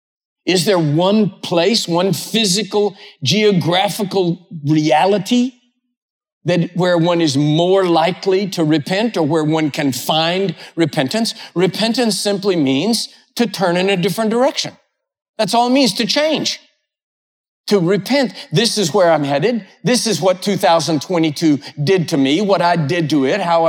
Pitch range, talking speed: 165-225 Hz, 145 wpm